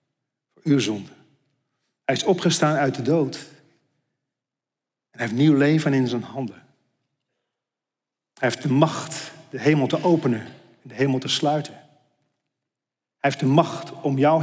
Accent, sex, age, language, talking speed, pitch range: Dutch, male, 40-59, Dutch, 135 wpm, 145-185 Hz